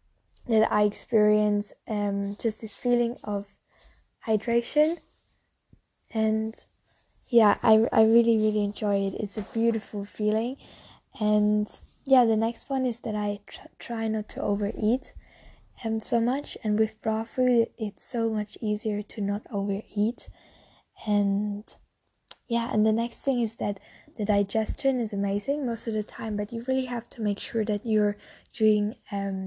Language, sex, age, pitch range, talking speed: English, female, 10-29, 205-230 Hz, 155 wpm